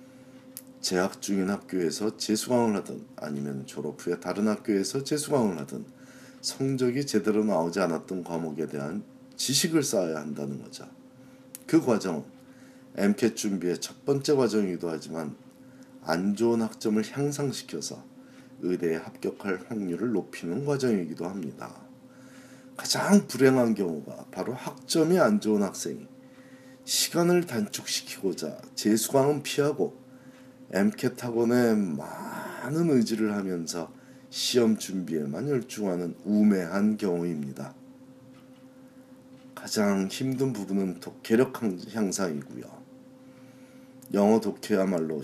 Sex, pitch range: male, 105-135 Hz